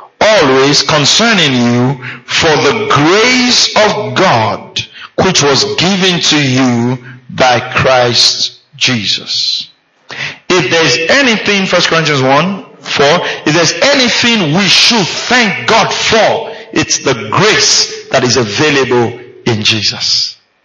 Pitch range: 130-200 Hz